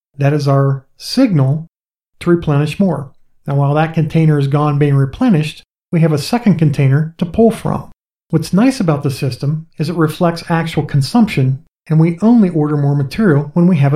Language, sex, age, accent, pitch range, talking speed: English, male, 50-69, American, 145-175 Hz, 180 wpm